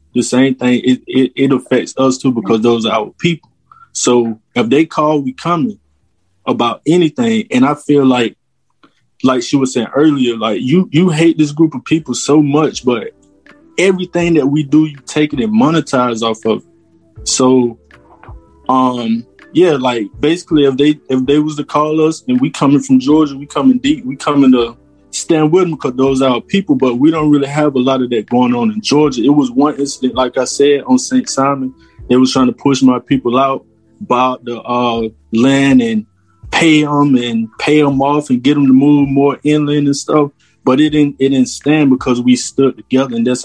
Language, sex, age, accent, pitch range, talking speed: English, male, 20-39, American, 125-155 Hz, 205 wpm